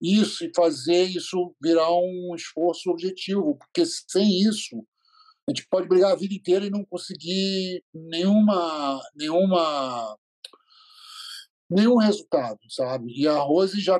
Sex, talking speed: male, 130 wpm